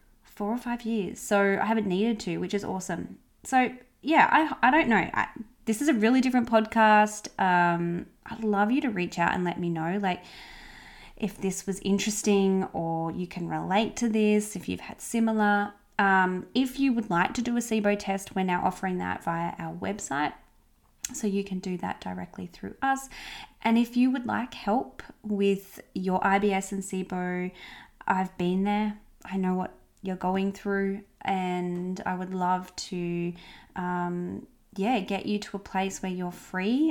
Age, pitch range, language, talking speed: 20-39, 180-220 Hz, English, 180 wpm